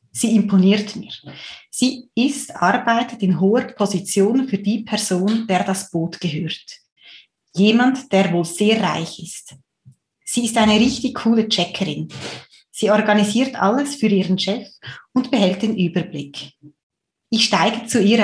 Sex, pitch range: female, 180-230 Hz